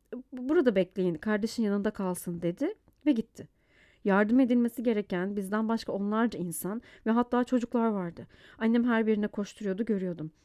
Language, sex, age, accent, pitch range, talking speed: Turkish, female, 40-59, native, 190-240 Hz, 140 wpm